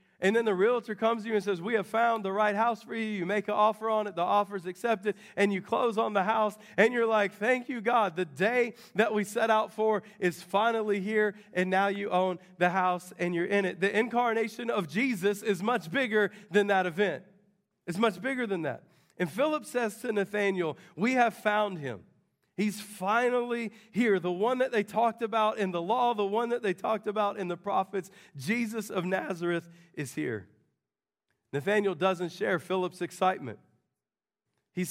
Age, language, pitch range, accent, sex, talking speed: 40-59, English, 190-225 Hz, American, male, 200 wpm